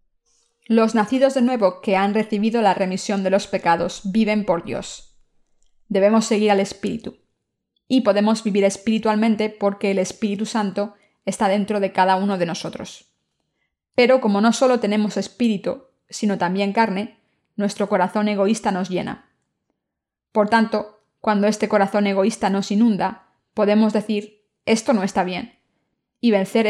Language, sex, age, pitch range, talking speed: Spanish, female, 20-39, 195-225 Hz, 145 wpm